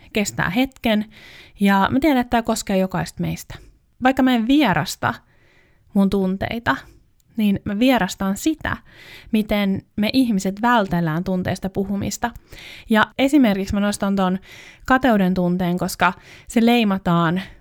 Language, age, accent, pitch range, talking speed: Finnish, 20-39, native, 180-235 Hz, 125 wpm